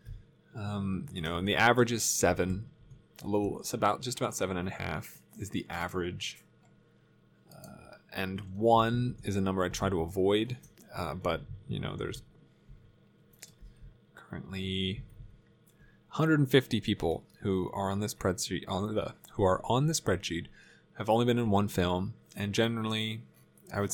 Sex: male